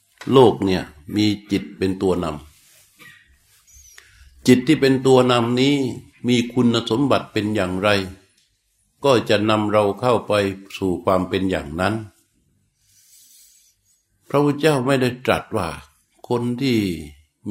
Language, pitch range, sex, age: Thai, 95-125 Hz, male, 60-79